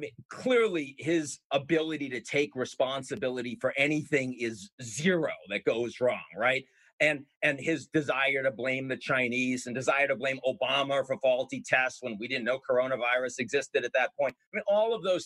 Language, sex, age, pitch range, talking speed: English, male, 40-59, 145-225 Hz, 180 wpm